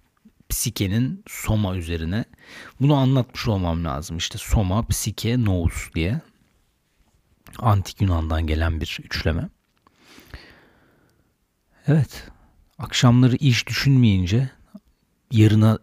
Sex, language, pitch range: male, Turkish, 90-120 Hz